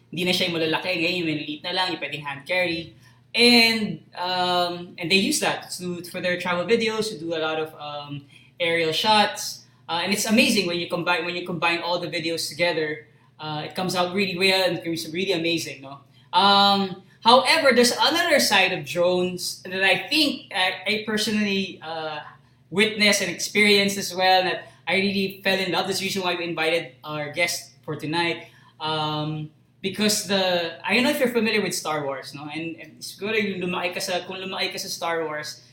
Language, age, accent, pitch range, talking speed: English, 20-39, Filipino, 160-195 Hz, 180 wpm